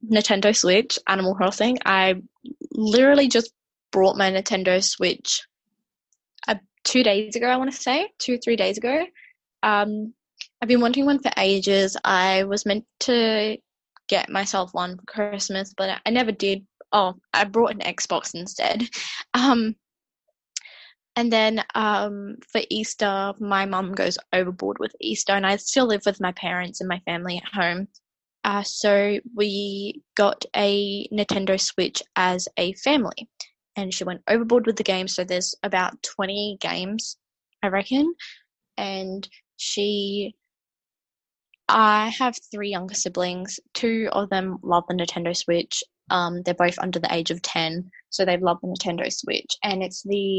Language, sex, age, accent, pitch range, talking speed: English, female, 10-29, Australian, 190-220 Hz, 155 wpm